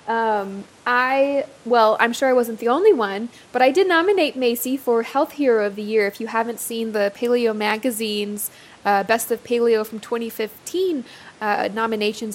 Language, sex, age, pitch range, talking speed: English, female, 20-39, 210-250 Hz, 175 wpm